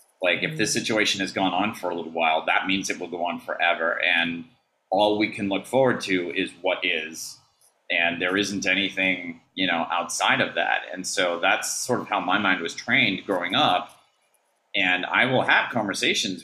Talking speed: 195 wpm